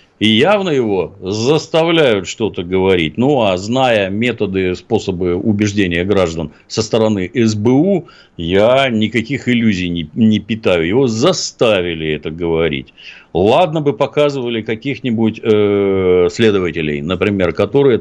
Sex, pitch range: male, 90-125 Hz